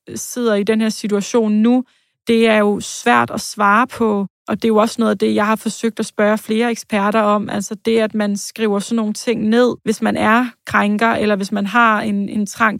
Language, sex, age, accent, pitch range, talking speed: Danish, female, 30-49, native, 205-225 Hz, 230 wpm